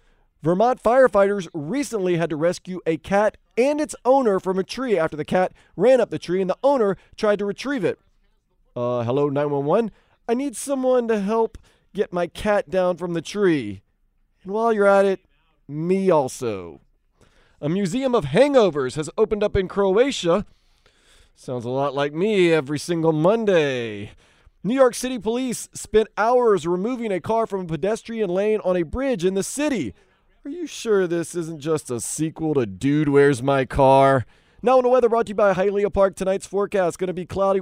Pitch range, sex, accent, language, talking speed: 160-220 Hz, male, American, English, 185 wpm